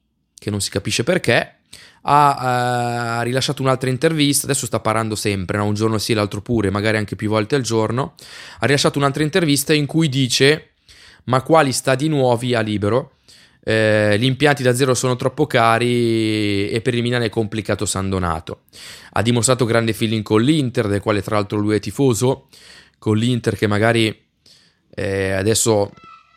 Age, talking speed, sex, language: 20-39, 170 wpm, male, Italian